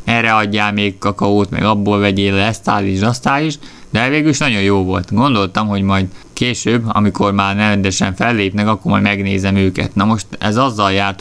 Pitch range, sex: 95-110 Hz, male